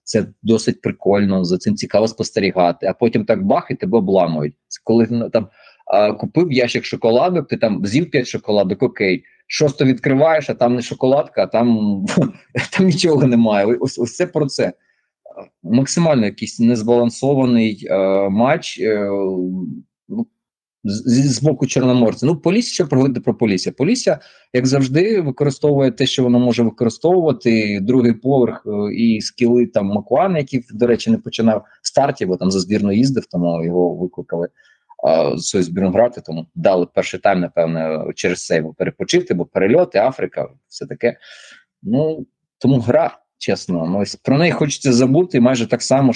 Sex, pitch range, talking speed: male, 105-135 Hz, 150 wpm